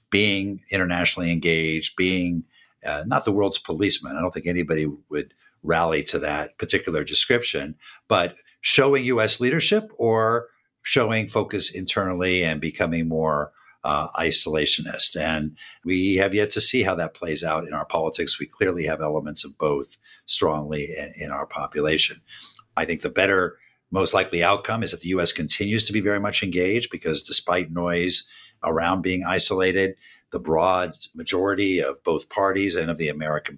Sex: male